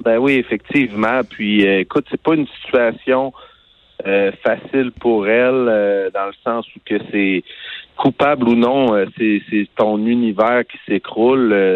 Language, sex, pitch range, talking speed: French, male, 100-125 Hz, 155 wpm